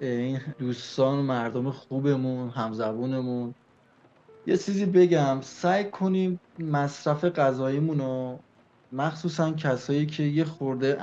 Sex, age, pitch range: male, 20-39, 125-160 Hz